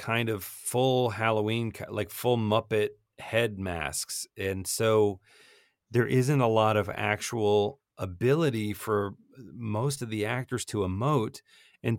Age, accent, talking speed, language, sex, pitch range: 40-59, American, 130 wpm, English, male, 105-135 Hz